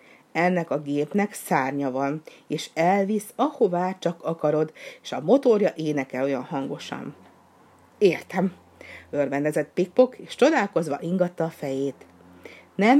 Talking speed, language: 115 wpm, Hungarian